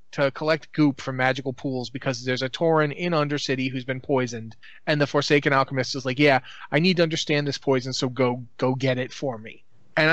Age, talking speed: 30-49, 215 wpm